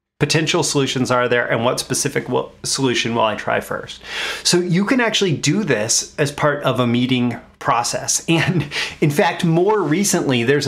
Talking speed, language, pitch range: 170 wpm, English, 130-165 Hz